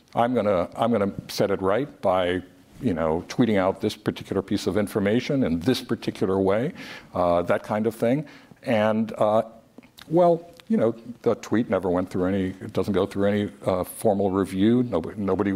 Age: 50-69